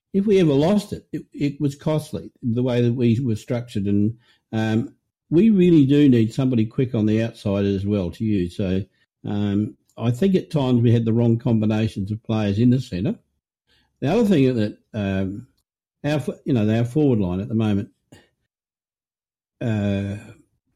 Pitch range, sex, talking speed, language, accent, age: 110-140 Hz, male, 180 wpm, English, Australian, 60-79